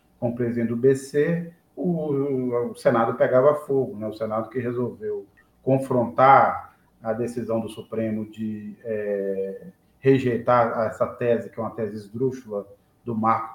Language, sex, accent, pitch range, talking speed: Portuguese, male, Brazilian, 110-130 Hz, 140 wpm